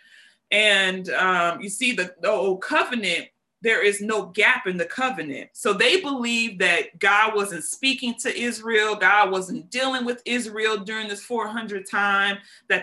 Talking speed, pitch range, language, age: 155 wpm, 195-240 Hz, English, 30-49